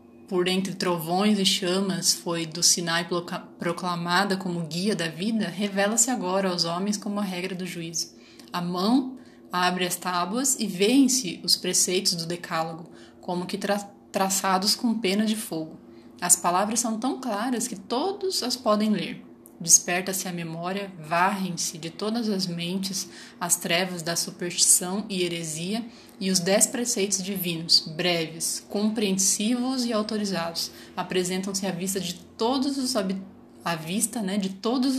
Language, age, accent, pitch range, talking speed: Portuguese, 20-39, Brazilian, 175-210 Hz, 145 wpm